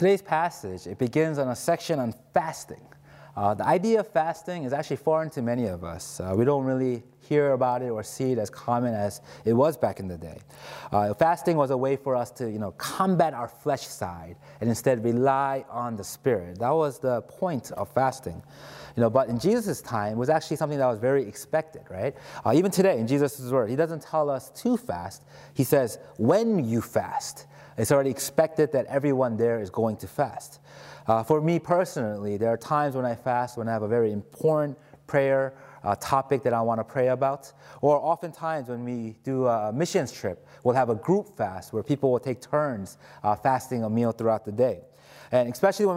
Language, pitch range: English, 115-150 Hz